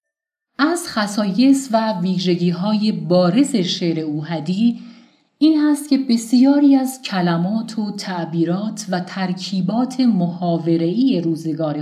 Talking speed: 95 wpm